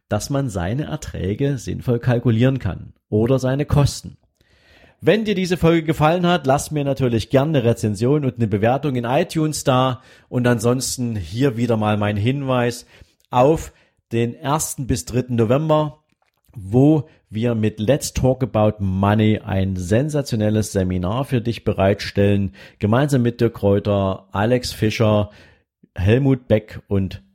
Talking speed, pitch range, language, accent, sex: 140 wpm, 105-135 Hz, German, German, male